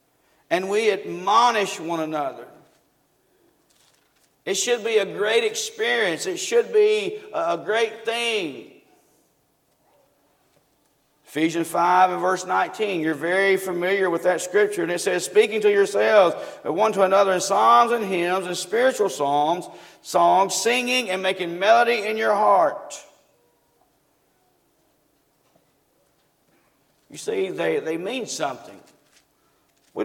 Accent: American